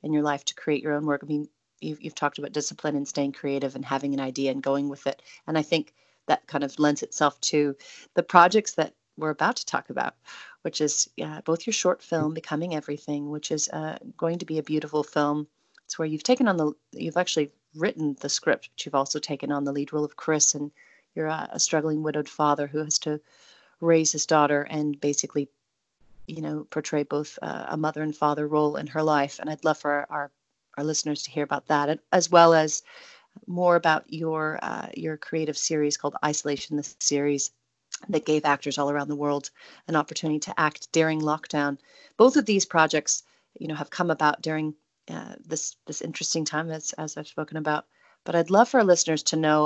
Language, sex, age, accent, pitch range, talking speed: English, female, 30-49, American, 145-160 Hz, 215 wpm